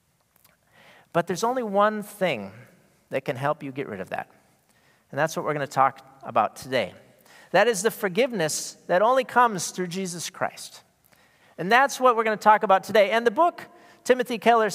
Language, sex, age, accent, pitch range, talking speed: English, male, 40-59, American, 160-235 Hz, 185 wpm